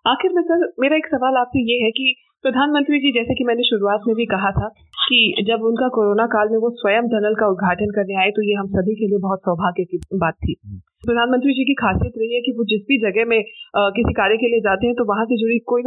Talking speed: 255 wpm